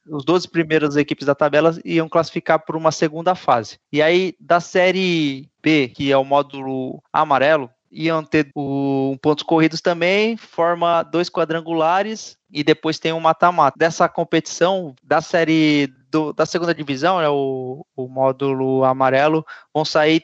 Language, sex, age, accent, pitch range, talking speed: Portuguese, male, 20-39, Brazilian, 140-180 Hz, 150 wpm